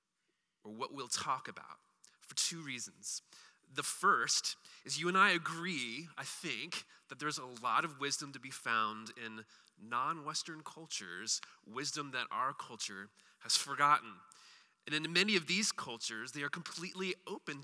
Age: 30-49